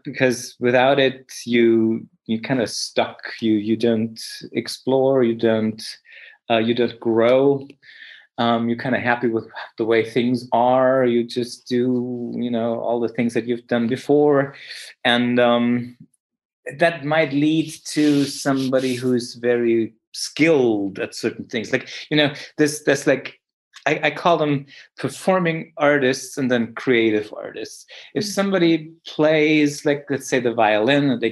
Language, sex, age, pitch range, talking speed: English, male, 30-49, 120-150 Hz, 150 wpm